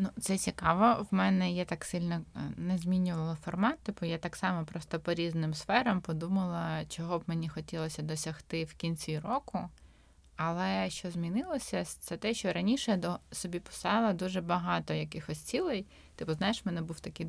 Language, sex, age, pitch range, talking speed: Ukrainian, female, 20-39, 165-205 Hz, 170 wpm